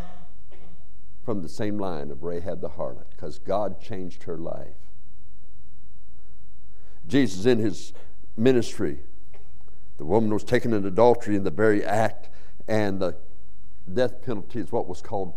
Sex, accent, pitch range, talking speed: male, American, 80-115 Hz, 135 wpm